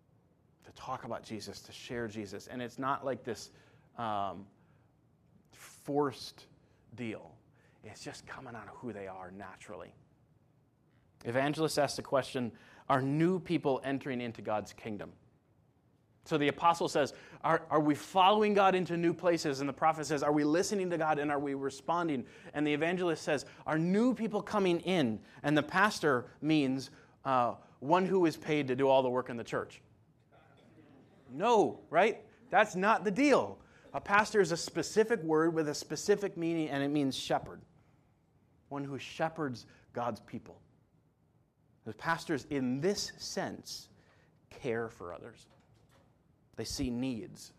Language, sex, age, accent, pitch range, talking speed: English, male, 30-49, American, 120-160 Hz, 155 wpm